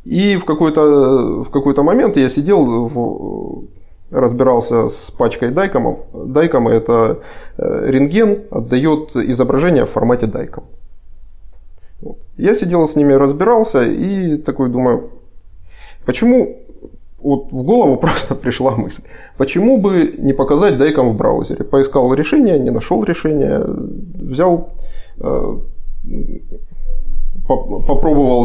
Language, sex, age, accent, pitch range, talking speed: Ukrainian, male, 20-39, native, 120-165 Hz, 110 wpm